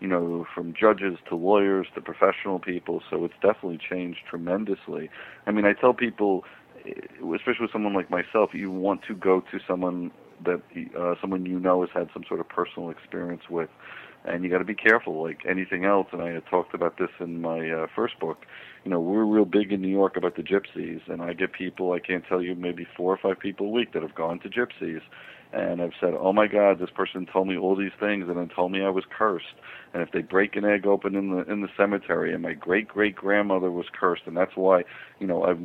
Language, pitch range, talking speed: English, 85-100 Hz, 235 wpm